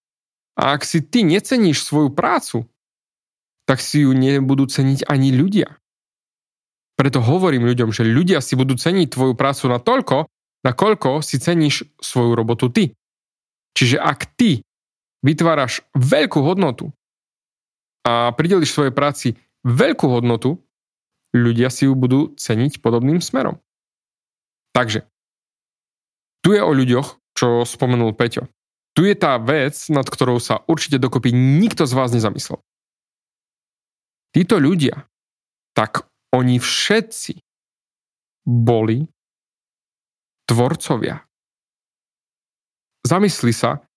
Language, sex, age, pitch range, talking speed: Slovak, male, 30-49, 125-155 Hz, 110 wpm